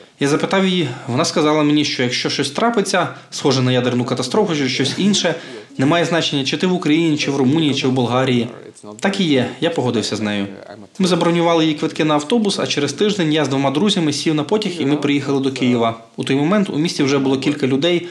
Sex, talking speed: male, 220 wpm